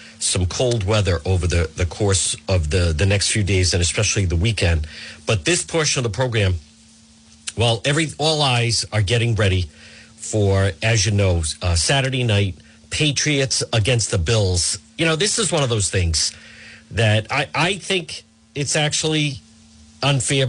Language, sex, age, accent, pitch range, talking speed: English, male, 50-69, American, 100-140 Hz, 160 wpm